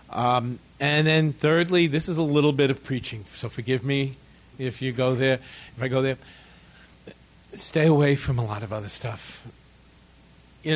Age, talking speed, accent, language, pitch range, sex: 50-69, 175 wpm, American, English, 115-145 Hz, male